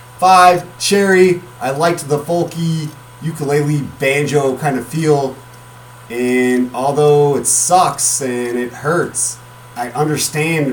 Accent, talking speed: American, 110 wpm